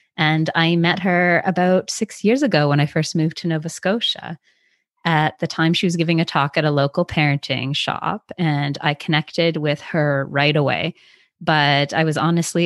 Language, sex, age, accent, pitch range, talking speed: English, female, 20-39, American, 150-180 Hz, 185 wpm